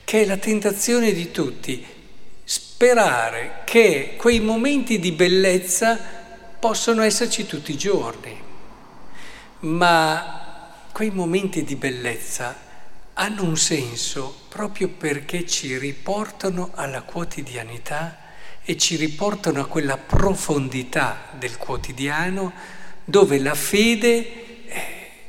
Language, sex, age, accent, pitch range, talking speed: Italian, male, 50-69, native, 135-190 Hz, 100 wpm